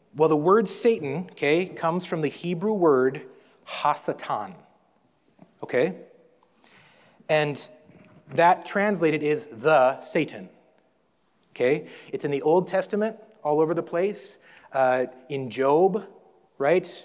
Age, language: 30-49, English